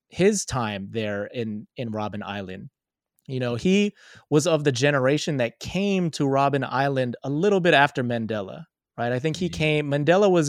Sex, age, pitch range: male, 30-49, 125-165 Hz